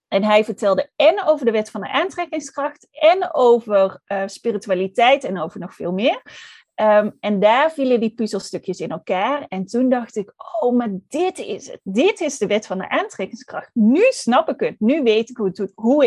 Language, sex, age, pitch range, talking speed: Dutch, female, 30-49, 200-270 Hz, 190 wpm